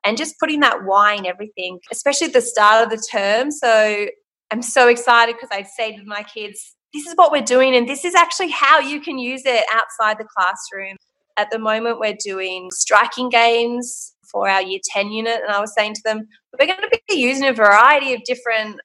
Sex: female